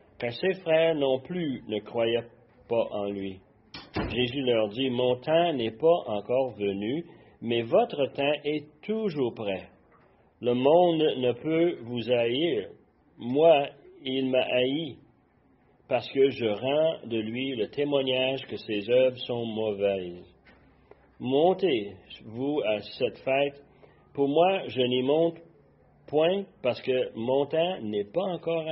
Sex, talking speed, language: male, 140 wpm, French